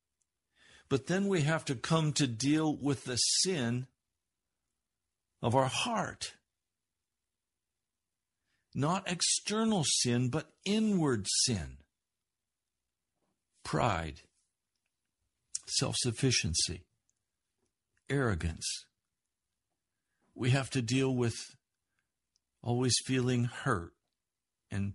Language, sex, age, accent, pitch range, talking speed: English, male, 60-79, American, 100-140 Hz, 75 wpm